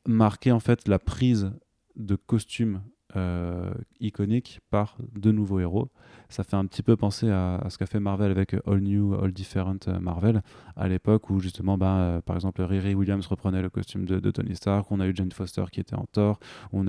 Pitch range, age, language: 95-110 Hz, 20-39, French